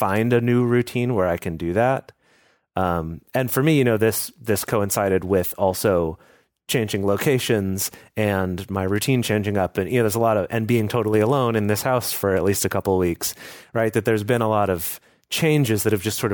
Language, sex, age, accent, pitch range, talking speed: English, male, 30-49, American, 95-125 Hz, 220 wpm